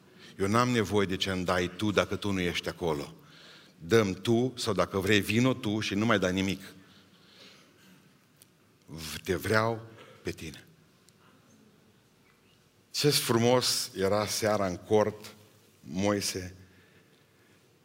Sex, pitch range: male, 95-120 Hz